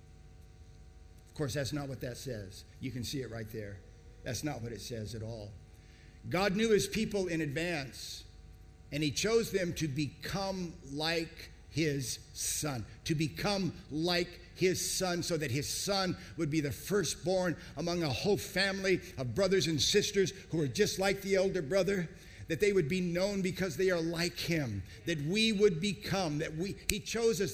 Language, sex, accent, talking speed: English, male, American, 180 wpm